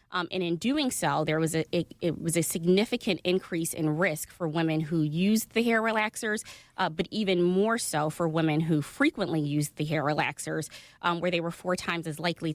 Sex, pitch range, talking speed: female, 155-190 Hz, 210 wpm